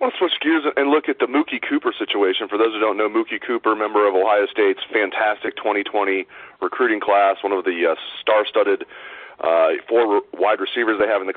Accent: American